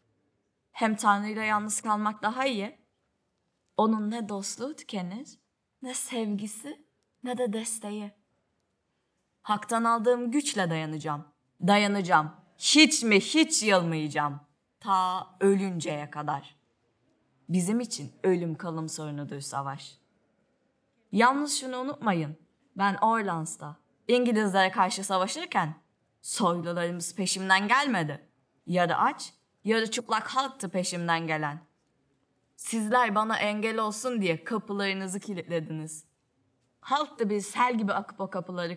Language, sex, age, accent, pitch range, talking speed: Turkish, female, 30-49, native, 165-225 Hz, 100 wpm